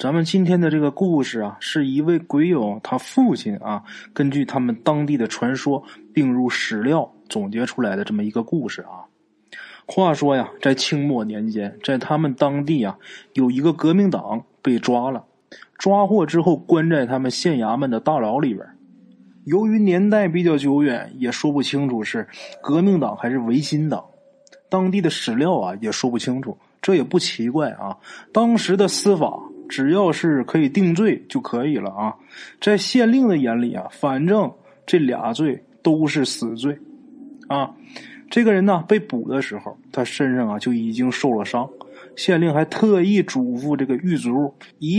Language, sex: Chinese, male